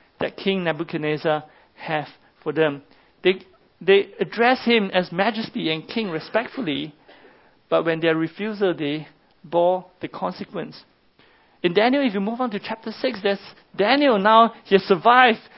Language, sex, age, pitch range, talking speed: English, male, 50-69, 175-230 Hz, 150 wpm